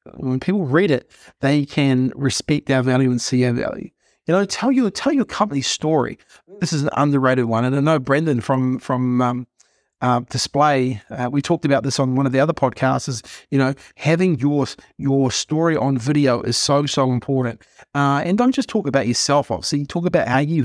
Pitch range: 130-150 Hz